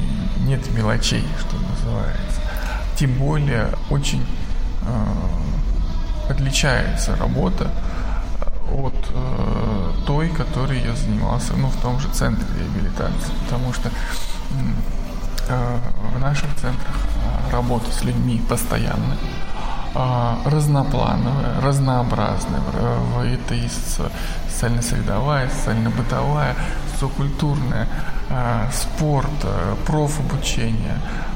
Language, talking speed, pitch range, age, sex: Russian, 85 wpm, 115-150 Hz, 20-39, male